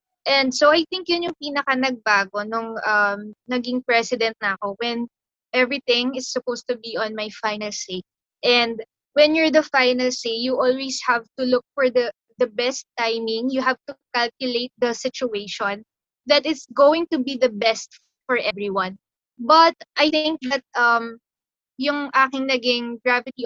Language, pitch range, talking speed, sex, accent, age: English, 235-275 Hz, 165 wpm, female, Filipino, 20-39